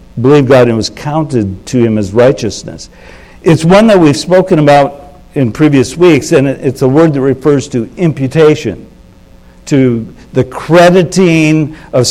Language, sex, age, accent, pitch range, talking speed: English, male, 60-79, American, 125-160 Hz, 150 wpm